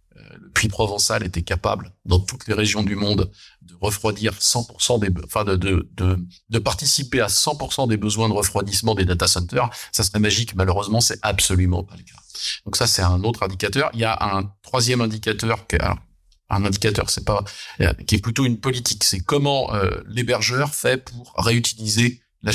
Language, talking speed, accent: French, 190 wpm, French